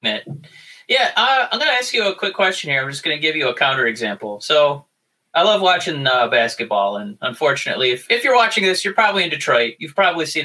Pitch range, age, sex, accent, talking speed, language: 145-235 Hz, 30-49, male, American, 230 wpm, English